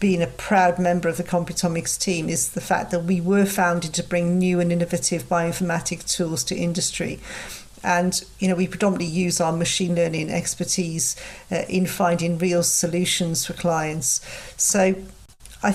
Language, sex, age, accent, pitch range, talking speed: English, female, 50-69, British, 170-190 Hz, 165 wpm